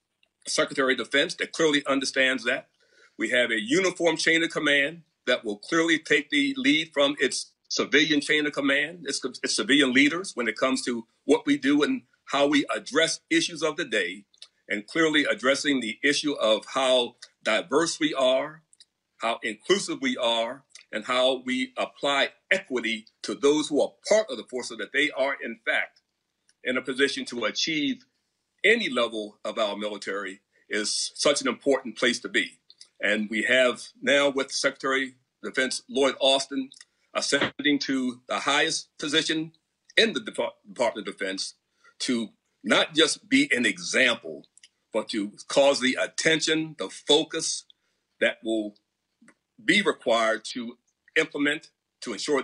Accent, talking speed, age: American, 155 wpm, 50-69